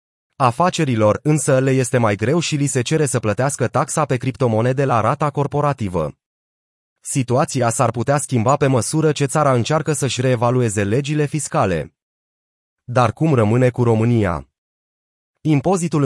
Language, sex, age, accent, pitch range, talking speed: Romanian, male, 30-49, native, 120-150 Hz, 140 wpm